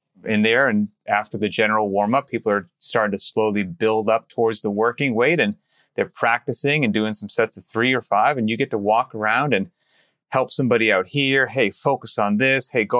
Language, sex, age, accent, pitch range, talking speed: English, male, 30-49, American, 110-150 Hz, 210 wpm